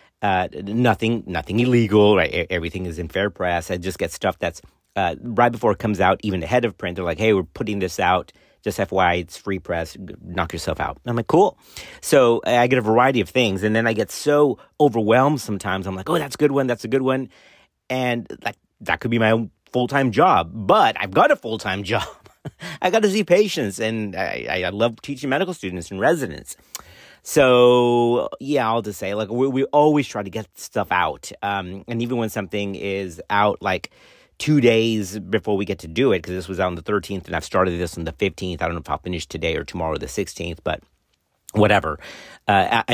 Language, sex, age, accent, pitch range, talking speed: English, male, 40-59, American, 95-125 Hz, 215 wpm